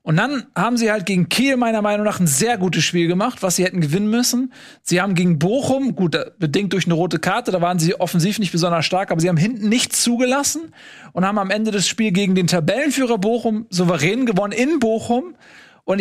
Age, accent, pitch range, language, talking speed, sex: 40-59, German, 180-230 Hz, German, 215 wpm, male